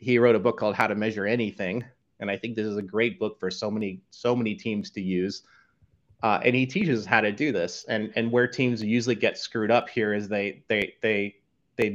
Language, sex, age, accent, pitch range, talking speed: English, male, 30-49, American, 110-130 Hz, 235 wpm